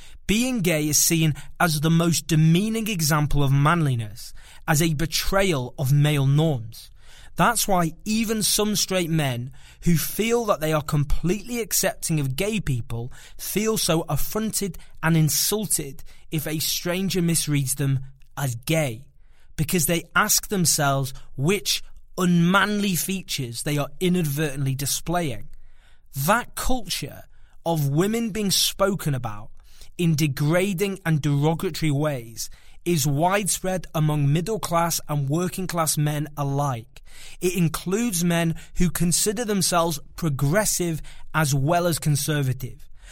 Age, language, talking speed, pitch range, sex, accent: 20-39, English, 125 wpm, 140-180 Hz, male, British